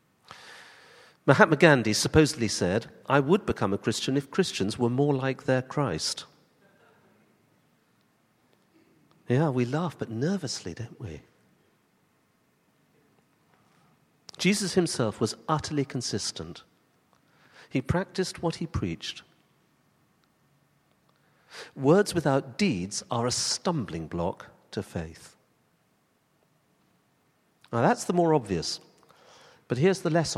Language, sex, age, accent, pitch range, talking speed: English, male, 50-69, British, 115-165 Hz, 100 wpm